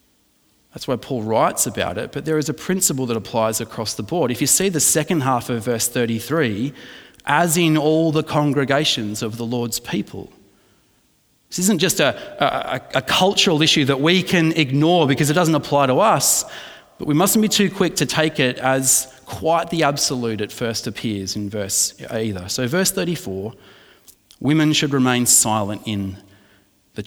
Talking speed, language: 175 wpm, English